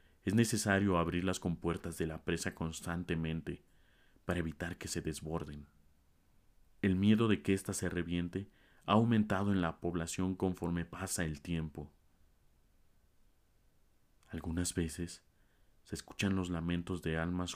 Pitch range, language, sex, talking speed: 80-95 Hz, Spanish, male, 130 wpm